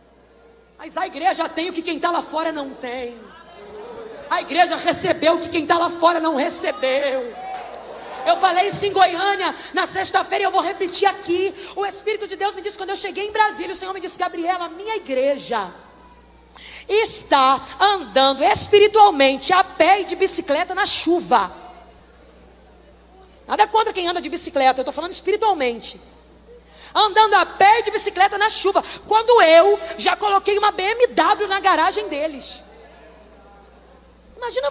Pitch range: 315-400 Hz